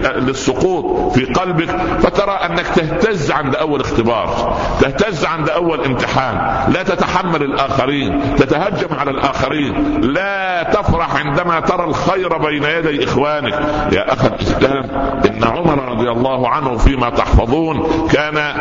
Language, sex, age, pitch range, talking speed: Arabic, male, 60-79, 130-170 Hz, 125 wpm